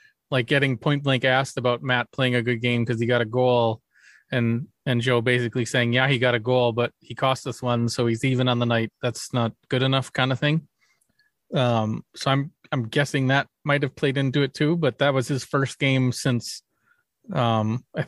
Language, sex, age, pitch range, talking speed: English, male, 30-49, 120-140 Hz, 210 wpm